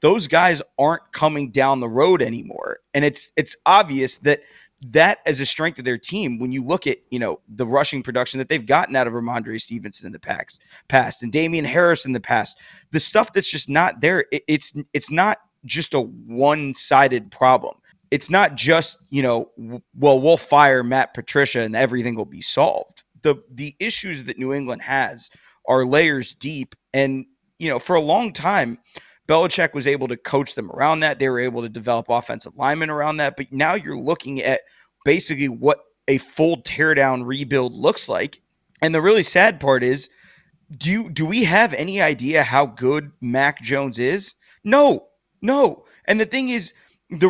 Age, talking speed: 30-49, 190 wpm